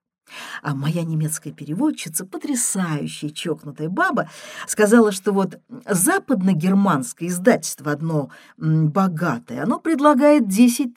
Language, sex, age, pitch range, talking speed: Russian, female, 50-69, 155-245 Hz, 95 wpm